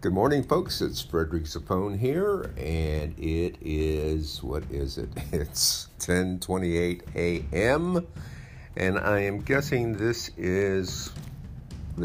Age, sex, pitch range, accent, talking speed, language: 50-69, male, 80-105 Hz, American, 115 wpm, English